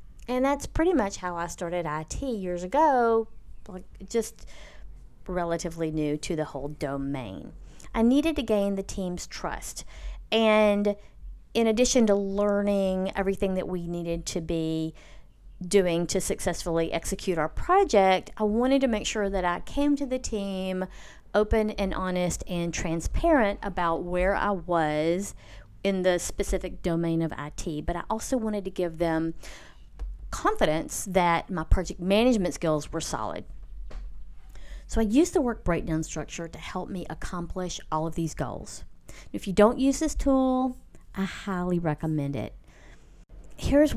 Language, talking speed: English, 150 wpm